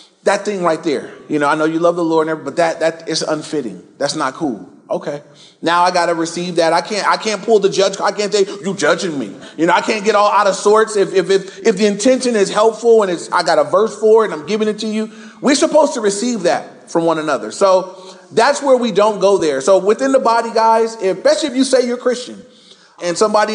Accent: American